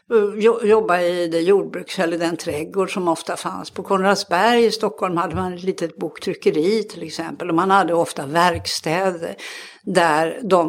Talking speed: 155 wpm